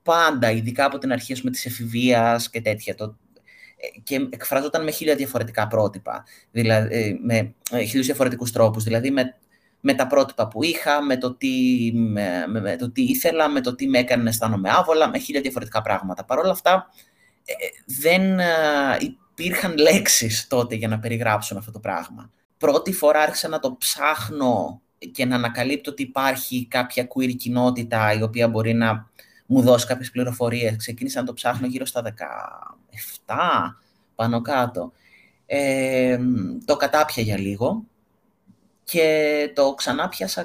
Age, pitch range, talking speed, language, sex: 30-49, 115-150 Hz, 155 wpm, Greek, male